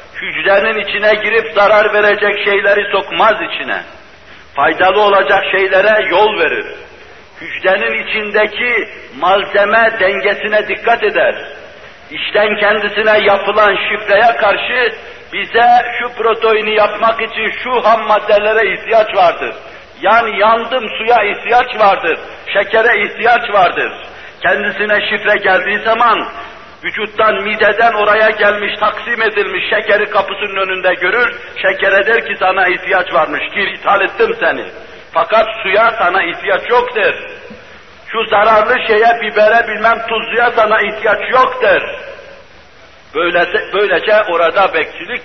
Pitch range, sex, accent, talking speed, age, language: 200-230 Hz, male, native, 115 wpm, 60-79, Turkish